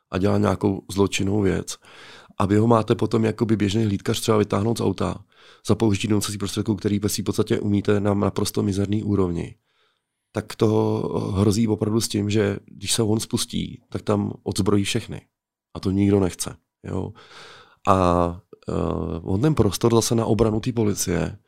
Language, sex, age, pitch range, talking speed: Czech, male, 30-49, 95-110 Hz, 170 wpm